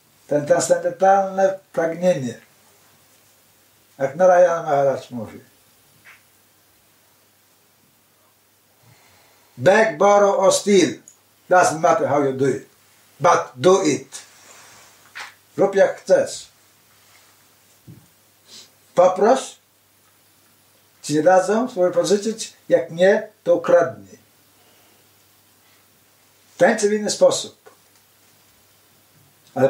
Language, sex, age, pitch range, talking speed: Polish, male, 60-79, 110-170 Hz, 75 wpm